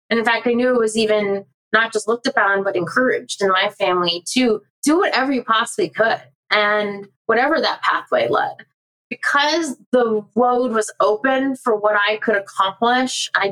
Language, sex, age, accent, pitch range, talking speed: English, female, 20-39, American, 200-255 Hz, 175 wpm